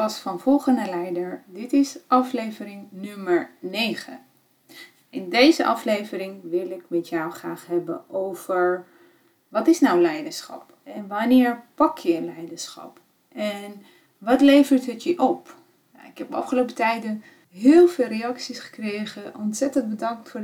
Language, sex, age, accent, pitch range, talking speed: Dutch, female, 30-49, Dutch, 195-245 Hz, 130 wpm